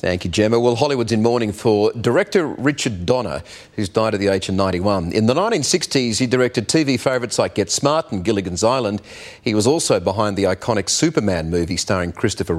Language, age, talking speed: English, 40-59, 195 wpm